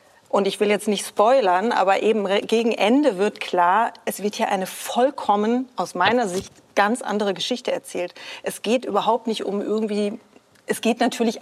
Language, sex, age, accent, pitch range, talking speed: German, female, 40-59, German, 190-235 Hz, 175 wpm